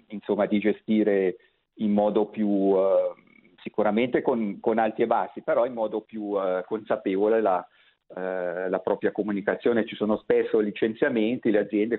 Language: Italian